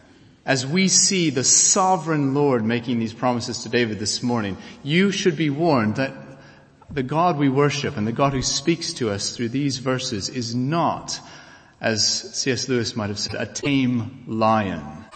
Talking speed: 170 wpm